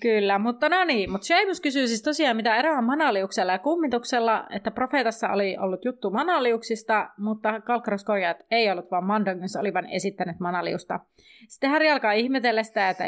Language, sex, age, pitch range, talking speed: Finnish, female, 30-49, 200-260 Hz, 165 wpm